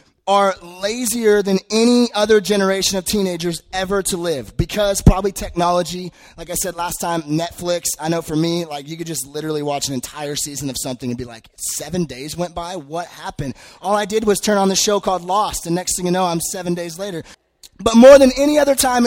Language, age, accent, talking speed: English, 20-39, American, 215 wpm